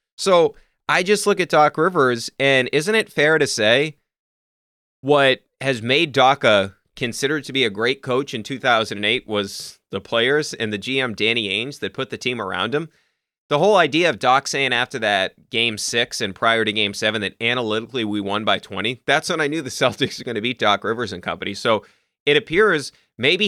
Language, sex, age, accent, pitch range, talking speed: English, male, 30-49, American, 115-150 Hz, 200 wpm